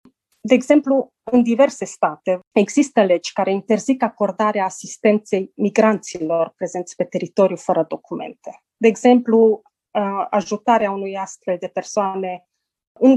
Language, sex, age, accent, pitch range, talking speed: Romanian, female, 30-49, native, 185-235 Hz, 115 wpm